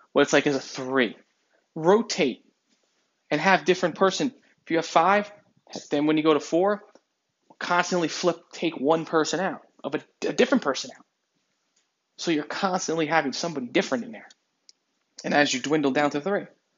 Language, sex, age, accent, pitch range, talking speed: English, male, 20-39, American, 150-185 Hz, 170 wpm